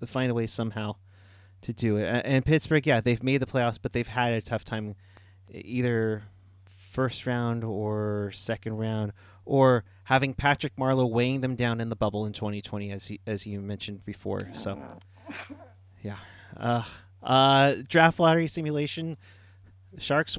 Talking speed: 155 wpm